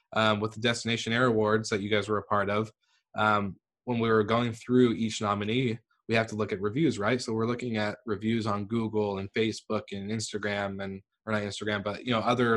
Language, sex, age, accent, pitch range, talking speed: English, male, 20-39, American, 105-120 Hz, 225 wpm